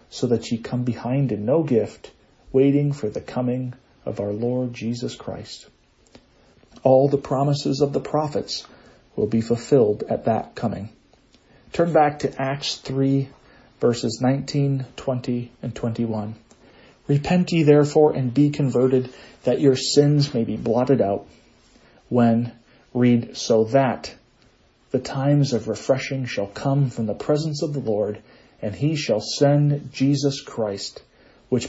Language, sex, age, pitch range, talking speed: English, male, 40-59, 120-145 Hz, 140 wpm